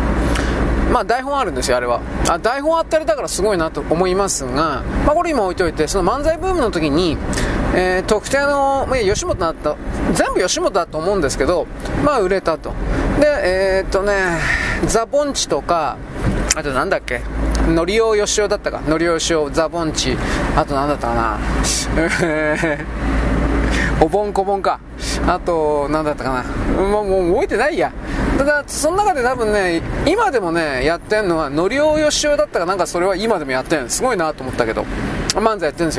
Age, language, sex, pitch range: 20-39, Japanese, male, 150-245 Hz